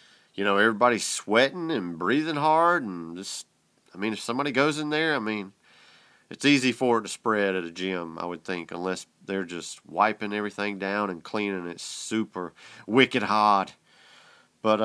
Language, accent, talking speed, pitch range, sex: English, American, 175 wpm, 95-120 Hz, male